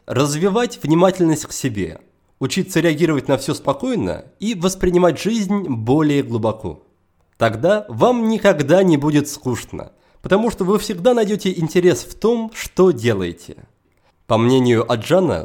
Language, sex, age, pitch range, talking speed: Russian, male, 30-49, 125-200 Hz, 130 wpm